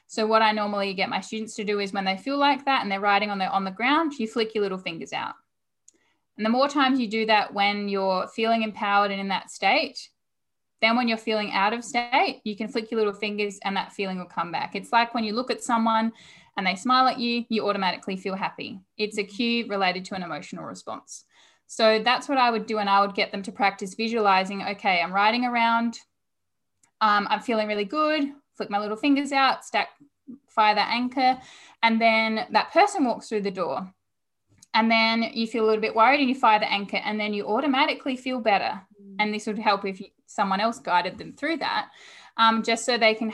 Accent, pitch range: Australian, 200-235 Hz